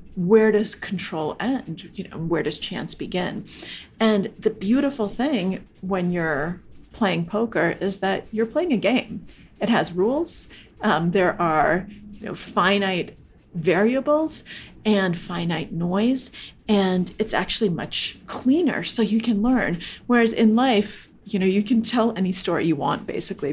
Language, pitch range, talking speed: English, 180-225 Hz, 150 wpm